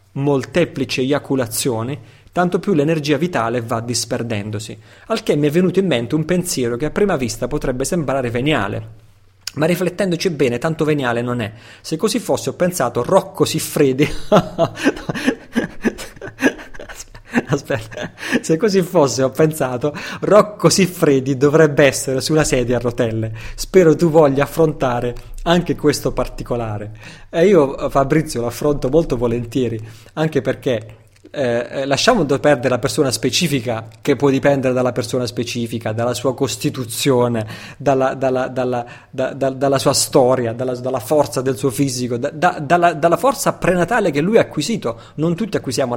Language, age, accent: Italian, 30-49, native